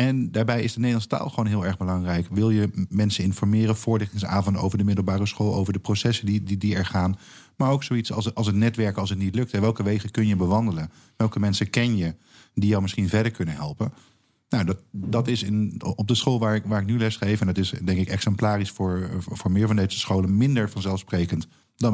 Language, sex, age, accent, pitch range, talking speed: Dutch, male, 50-69, Dutch, 95-120 Hz, 220 wpm